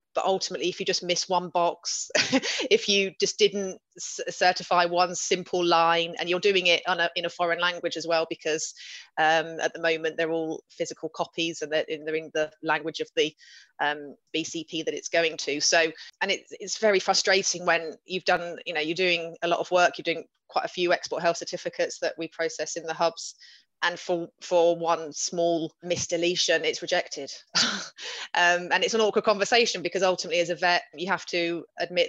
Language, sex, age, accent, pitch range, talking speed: English, female, 30-49, British, 160-185 Hz, 195 wpm